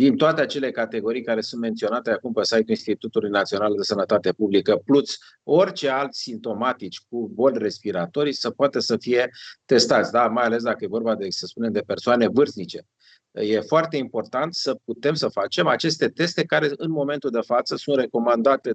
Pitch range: 110-140 Hz